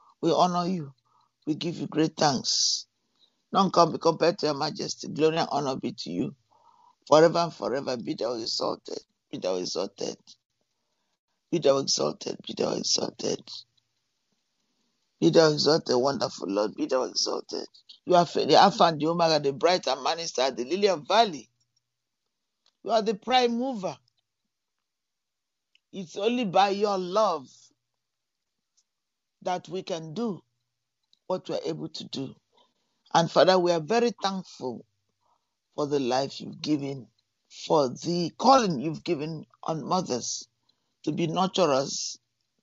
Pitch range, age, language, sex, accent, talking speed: 140-195 Hz, 50-69, English, male, Nigerian, 140 wpm